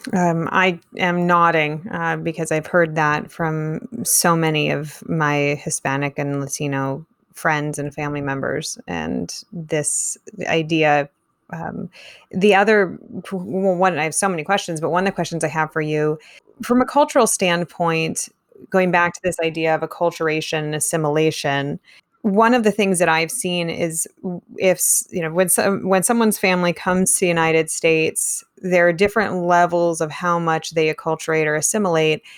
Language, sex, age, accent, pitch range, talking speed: English, female, 20-39, American, 160-185 Hz, 160 wpm